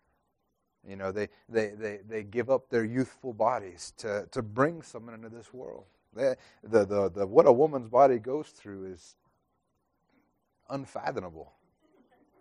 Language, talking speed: English, 145 wpm